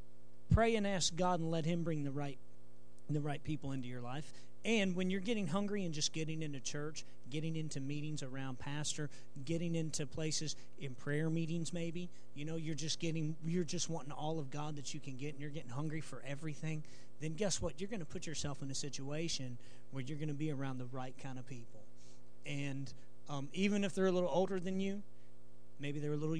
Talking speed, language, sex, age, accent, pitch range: 210 wpm, English, male, 40-59, American, 140-190 Hz